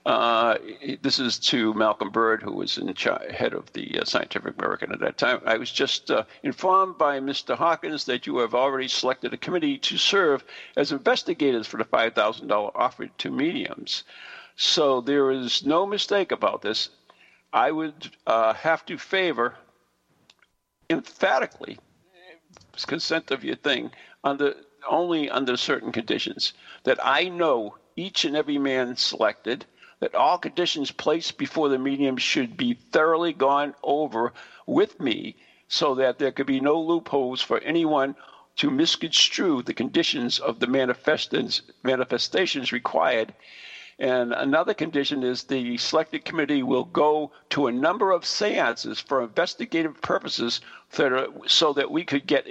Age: 60-79